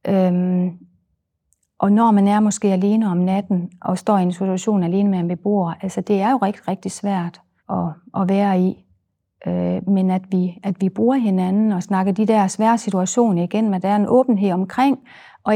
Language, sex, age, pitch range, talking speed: Danish, female, 40-59, 185-235 Hz, 200 wpm